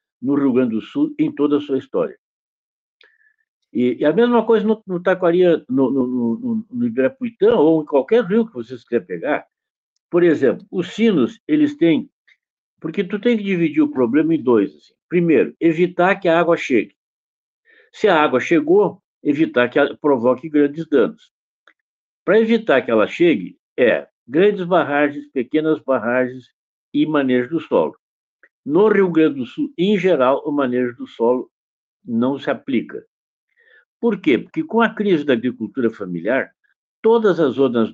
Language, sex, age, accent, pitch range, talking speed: Portuguese, male, 60-79, Brazilian, 140-225 Hz, 165 wpm